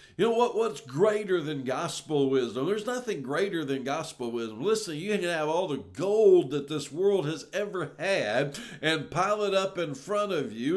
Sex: male